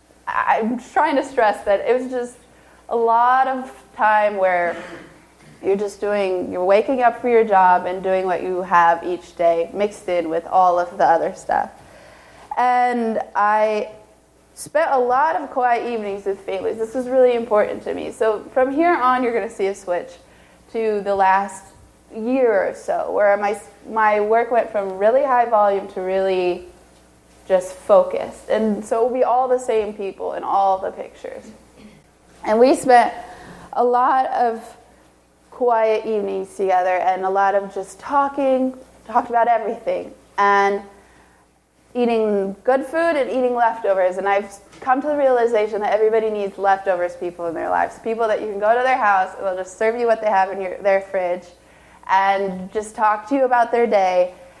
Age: 20-39